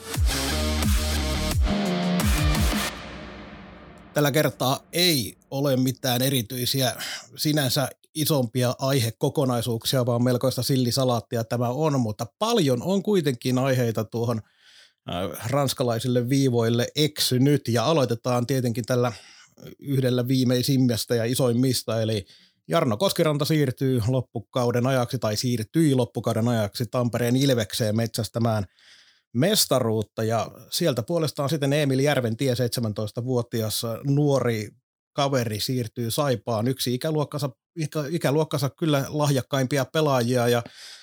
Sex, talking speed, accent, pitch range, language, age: male, 95 wpm, native, 120-145 Hz, Finnish, 30-49